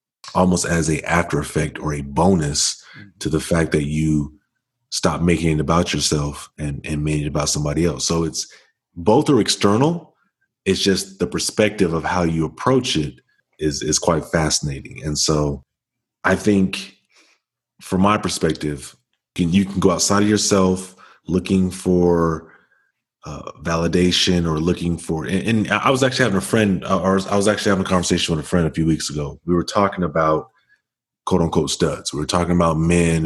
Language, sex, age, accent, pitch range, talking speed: English, male, 30-49, American, 80-95 Hz, 175 wpm